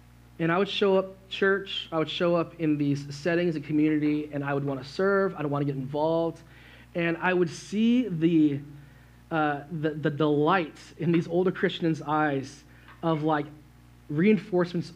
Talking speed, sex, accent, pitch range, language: 175 wpm, male, American, 145-185 Hz, English